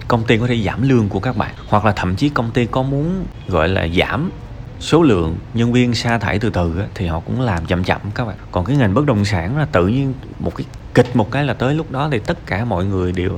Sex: male